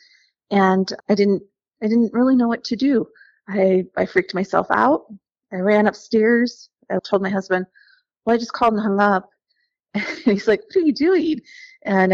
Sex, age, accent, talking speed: female, 30-49, American, 185 wpm